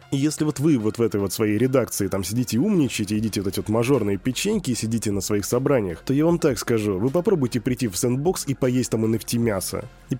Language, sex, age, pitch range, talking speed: Russian, male, 20-39, 105-130 Hz, 235 wpm